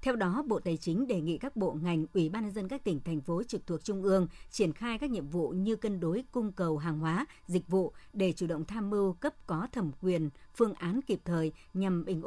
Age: 60-79